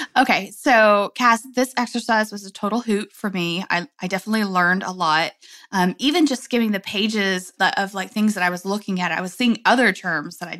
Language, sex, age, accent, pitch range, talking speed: English, female, 20-39, American, 180-230 Hz, 220 wpm